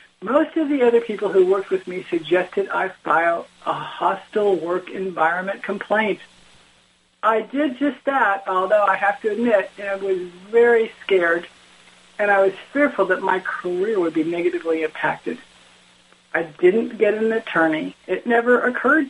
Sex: female